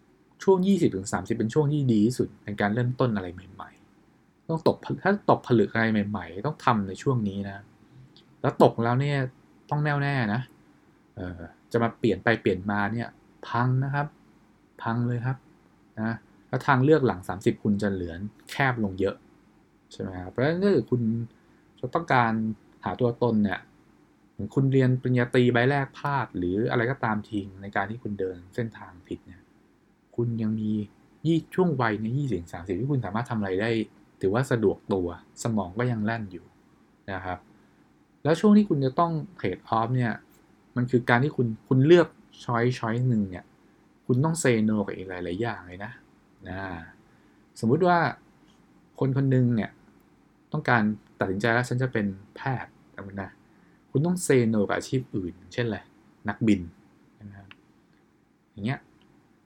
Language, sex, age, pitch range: English, male, 20-39, 100-130 Hz